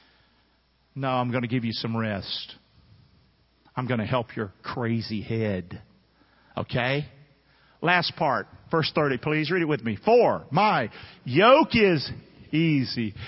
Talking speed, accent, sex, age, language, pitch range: 135 wpm, American, male, 50-69, English, 125-210 Hz